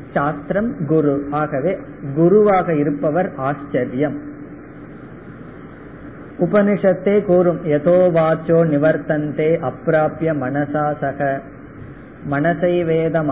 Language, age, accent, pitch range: Tamil, 20-39, native, 145-180 Hz